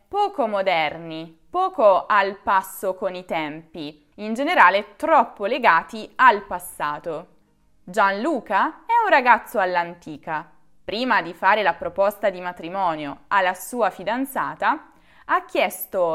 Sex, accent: female, native